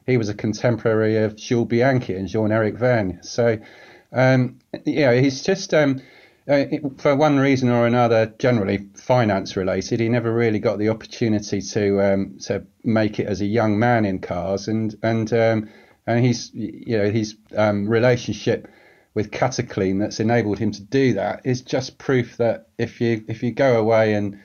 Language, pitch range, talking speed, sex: English, 105-125 Hz, 180 wpm, male